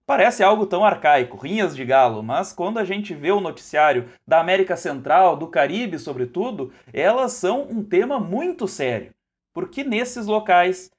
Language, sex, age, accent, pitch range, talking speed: Portuguese, male, 30-49, Brazilian, 150-225 Hz, 160 wpm